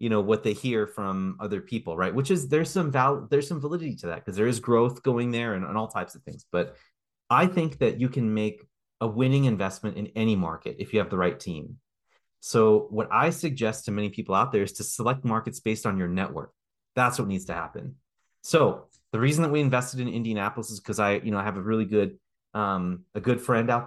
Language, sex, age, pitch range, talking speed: English, male, 30-49, 105-130 Hz, 240 wpm